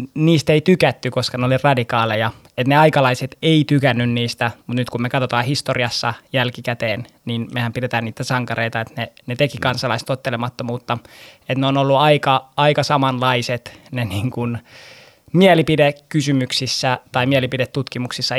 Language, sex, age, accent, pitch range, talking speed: Finnish, male, 20-39, native, 120-135 Hz, 135 wpm